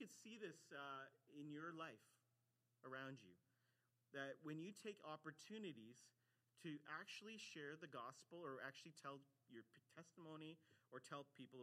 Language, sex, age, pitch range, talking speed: English, male, 40-59, 125-170 Hz, 140 wpm